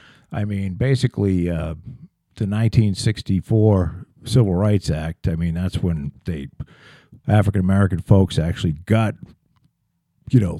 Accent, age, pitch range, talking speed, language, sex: American, 50-69, 90-135 Hz, 120 wpm, English, male